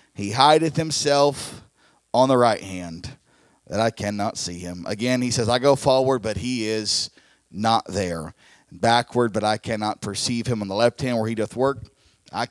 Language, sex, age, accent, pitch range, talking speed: English, male, 40-59, American, 120-145 Hz, 180 wpm